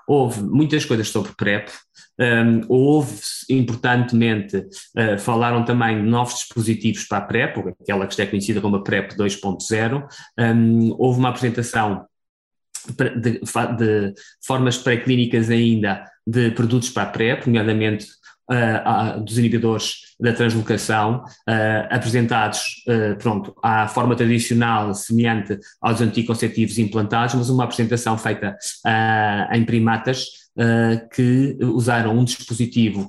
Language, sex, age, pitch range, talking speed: Portuguese, male, 20-39, 110-125 Hz, 105 wpm